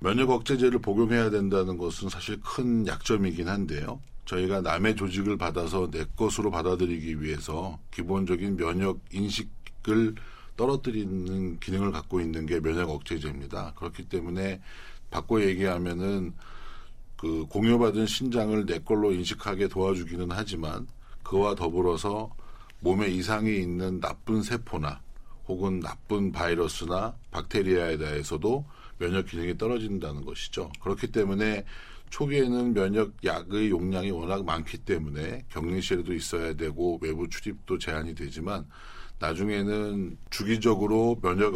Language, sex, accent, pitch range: Korean, male, native, 85-110 Hz